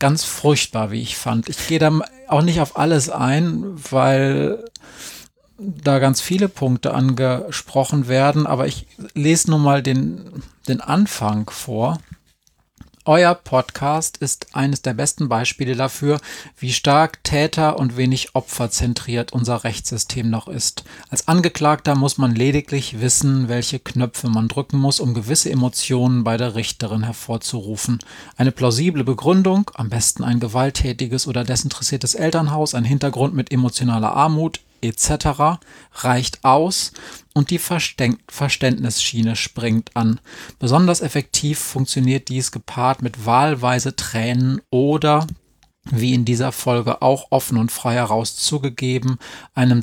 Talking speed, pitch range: 130 wpm, 120-145 Hz